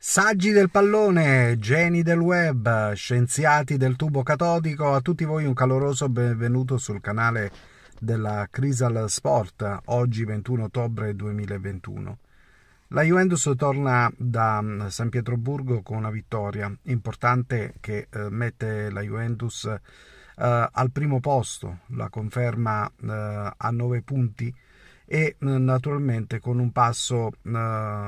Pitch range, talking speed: 110-130 Hz, 110 wpm